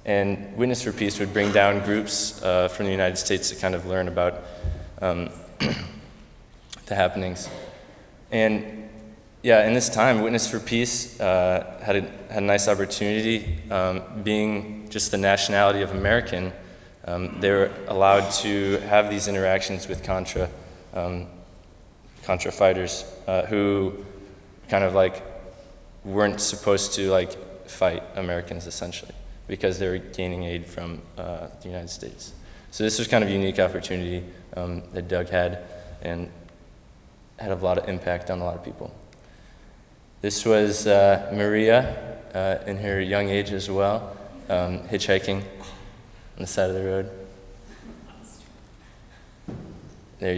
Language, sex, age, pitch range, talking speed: English, male, 20-39, 90-100 Hz, 145 wpm